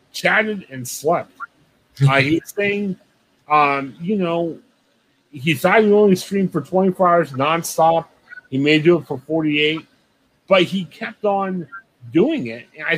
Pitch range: 150-205 Hz